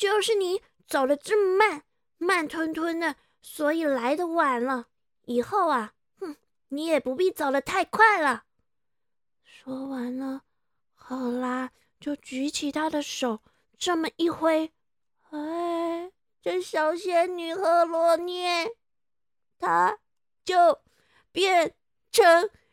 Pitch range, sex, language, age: 245-330 Hz, female, Chinese, 20-39